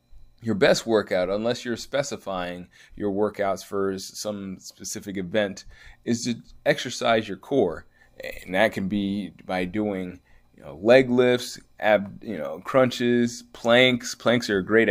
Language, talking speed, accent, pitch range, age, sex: English, 145 wpm, American, 90-110 Hz, 20-39, male